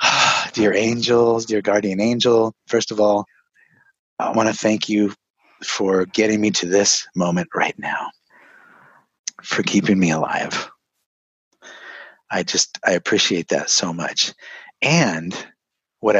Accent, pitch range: American, 105-130 Hz